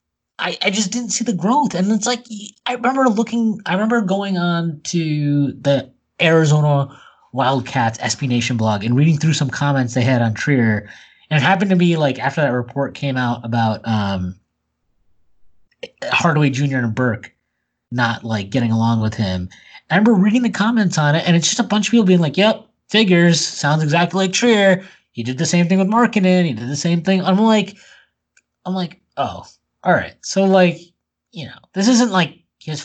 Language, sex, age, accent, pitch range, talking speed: English, male, 20-39, American, 125-195 Hz, 195 wpm